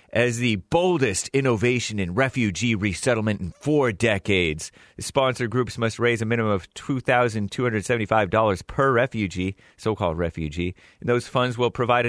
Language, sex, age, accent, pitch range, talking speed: English, male, 30-49, American, 95-125 Hz, 140 wpm